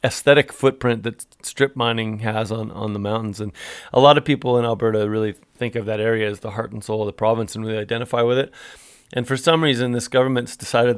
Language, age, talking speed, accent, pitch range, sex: English, 30-49, 230 wpm, American, 115-130 Hz, male